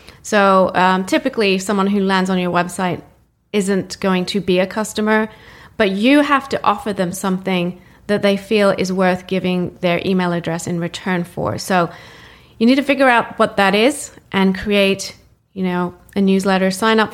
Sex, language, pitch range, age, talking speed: female, English, 175-205 Hz, 30-49, 175 wpm